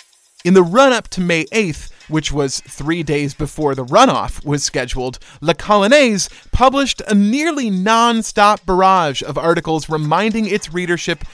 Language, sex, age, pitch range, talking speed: English, male, 30-49, 155-230 Hz, 145 wpm